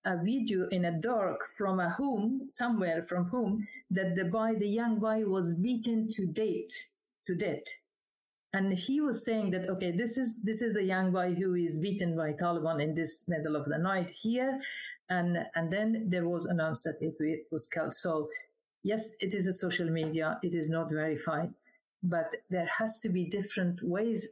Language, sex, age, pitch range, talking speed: English, female, 50-69, 170-220 Hz, 190 wpm